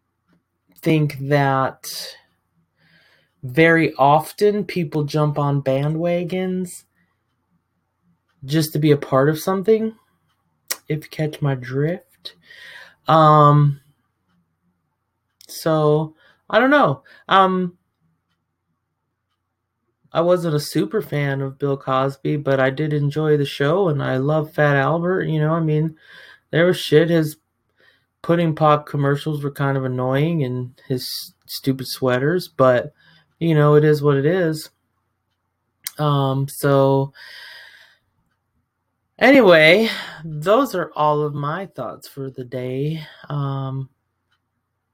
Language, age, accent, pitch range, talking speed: English, 20-39, American, 125-155 Hz, 115 wpm